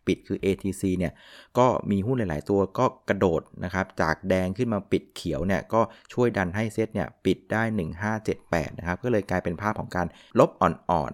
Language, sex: Thai, male